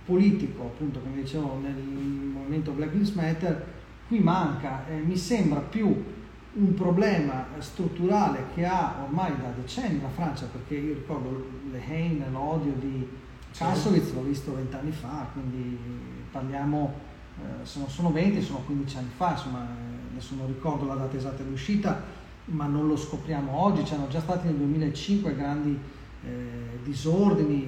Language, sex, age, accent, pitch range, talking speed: Italian, male, 40-59, native, 135-185 Hz, 150 wpm